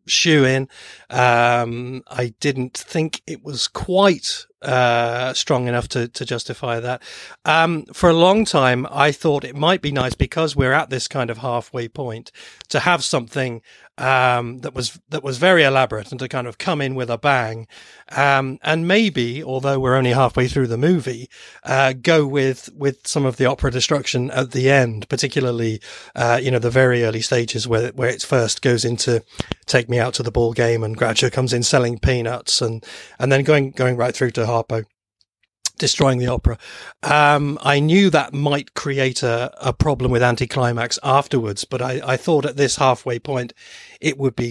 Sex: male